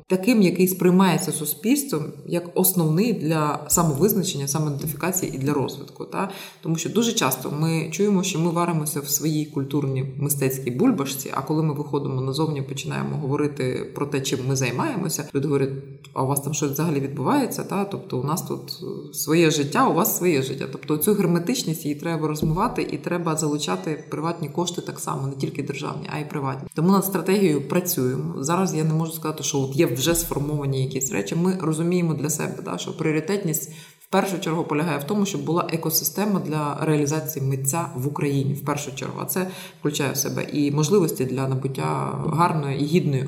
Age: 20-39